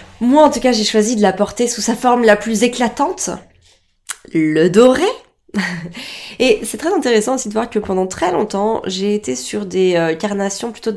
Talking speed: 185 wpm